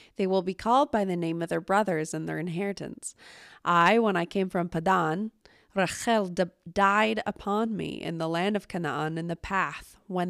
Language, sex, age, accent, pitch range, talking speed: English, female, 20-39, American, 160-200 Hz, 200 wpm